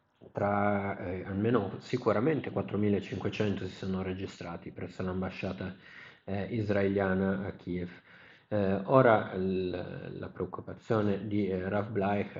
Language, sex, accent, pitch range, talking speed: Italian, male, native, 90-100 Hz, 100 wpm